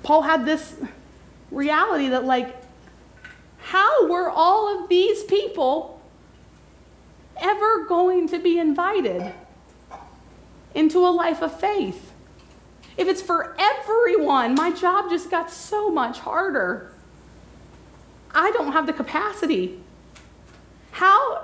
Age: 30-49